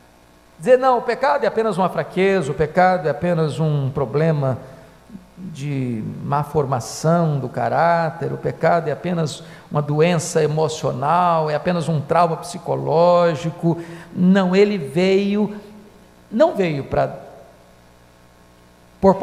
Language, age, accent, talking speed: Portuguese, 50-69, Brazilian, 120 wpm